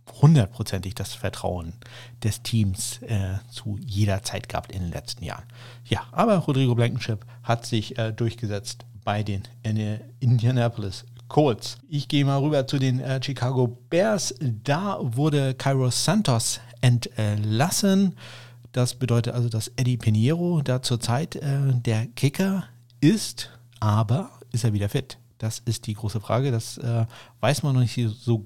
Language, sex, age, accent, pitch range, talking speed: German, male, 50-69, German, 105-125 Hz, 145 wpm